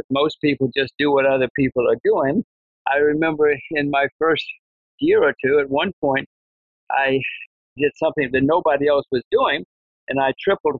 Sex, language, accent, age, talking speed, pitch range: male, English, American, 60-79, 170 wpm, 135-160 Hz